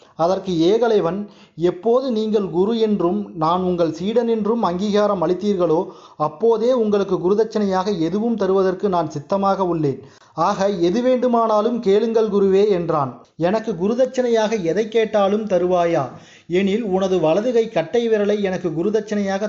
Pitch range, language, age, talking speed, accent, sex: 175-220 Hz, Tamil, 30-49, 115 wpm, native, male